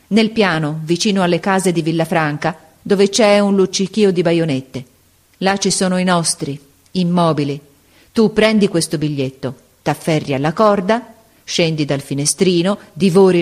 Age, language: 40-59, Italian